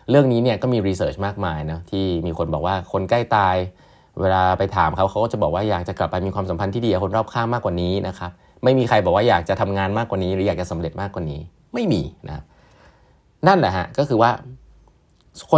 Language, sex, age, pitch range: Thai, male, 30-49, 85-115 Hz